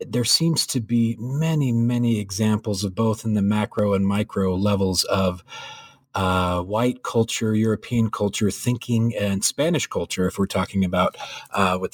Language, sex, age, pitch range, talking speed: English, male, 40-59, 95-120 Hz, 155 wpm